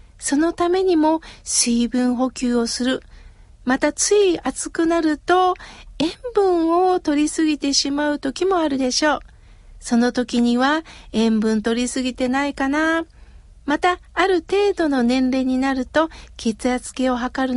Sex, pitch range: female, 245-345 Hz